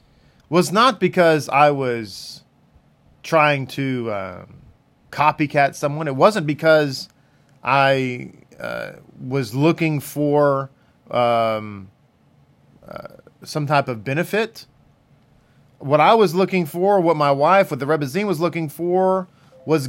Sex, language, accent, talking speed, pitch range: male, English, American, 120 wpm, 135-175 Hz